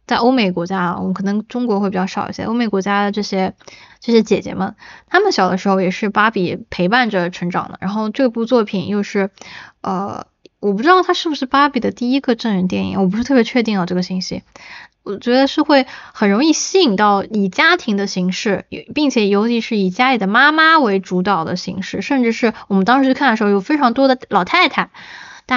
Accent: native